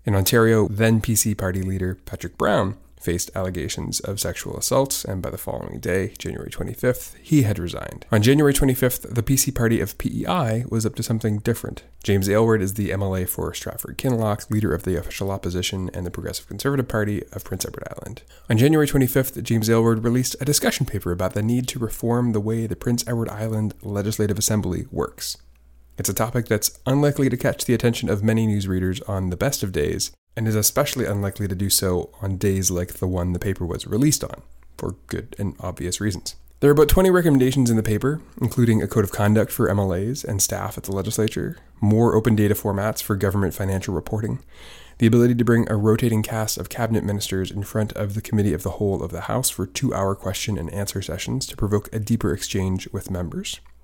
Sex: male